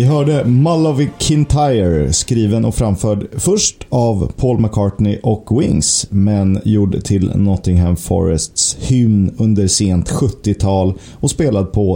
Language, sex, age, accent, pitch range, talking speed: Swedish, male, 30-49, native, 95-125 Hz, 125 wpm